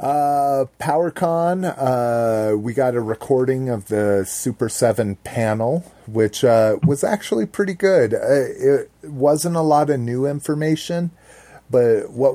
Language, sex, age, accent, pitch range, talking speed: English, male, 40-59, American, 100-135 Hz, 135 wpm